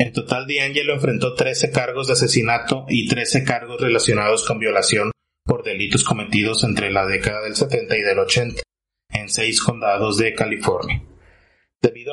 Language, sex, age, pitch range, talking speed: Spanish, male, 30-49, 110-145 Hz, 155 wpm